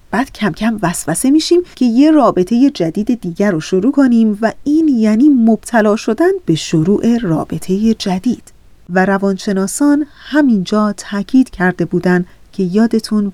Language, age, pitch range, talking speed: Persian, 30-49, 195-255 Hz, 135 wpm